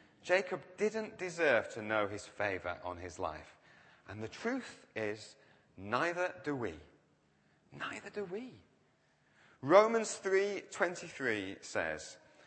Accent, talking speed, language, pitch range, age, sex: British, 110 wpm, English, 130-205 Hz, 30-49, male